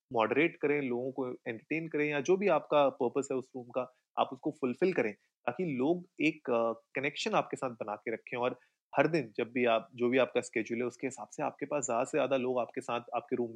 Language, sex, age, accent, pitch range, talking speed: Hindi, male, 30-49, native, 120-150 Hz, 230 wpm